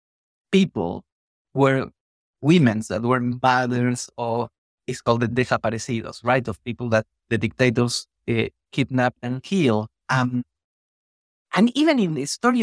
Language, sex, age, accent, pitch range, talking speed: English, male, 50-69, Mexican, 125-180 Hz, 130 wpm